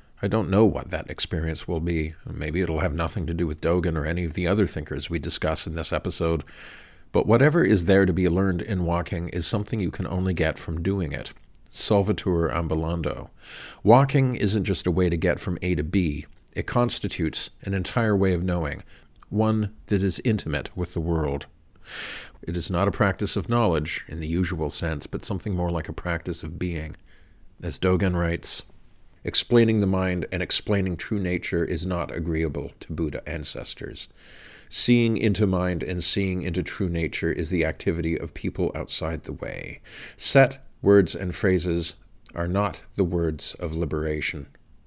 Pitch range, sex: 80-95 Hz, male